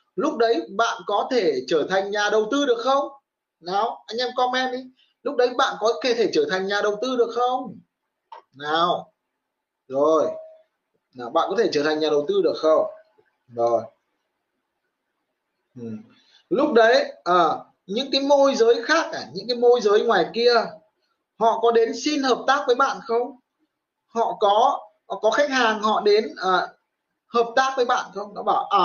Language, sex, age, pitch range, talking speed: Vietnamese, male, 20-39, 195-275 Hz, 175 wpm